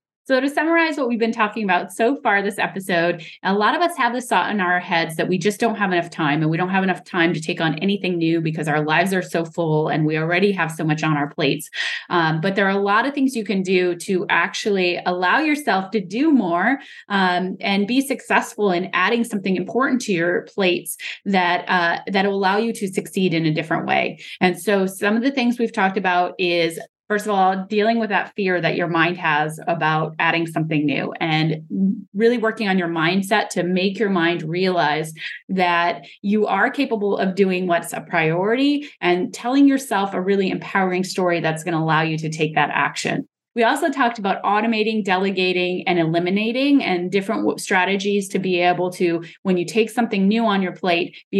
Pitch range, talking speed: 175-220 Hz, 210 wpm